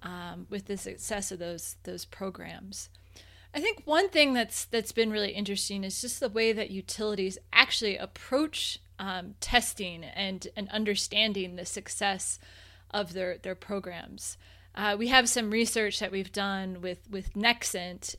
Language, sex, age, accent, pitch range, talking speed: English, female, 20-39, American, 180-225 Hz, 155 wpm